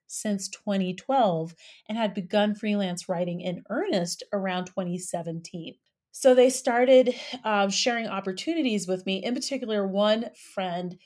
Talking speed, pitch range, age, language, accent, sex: 125 wpm, 190-245 Hz, 30-49, English, American, female